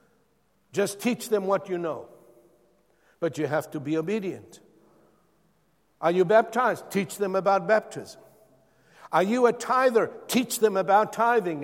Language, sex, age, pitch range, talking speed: English, male, 60-79, 145-195 Hz, 140 wpm